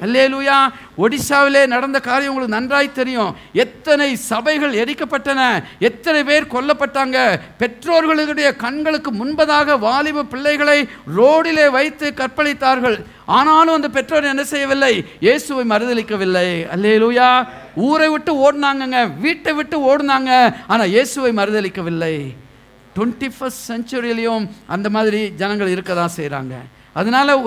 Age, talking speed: 50-69, 120 wpm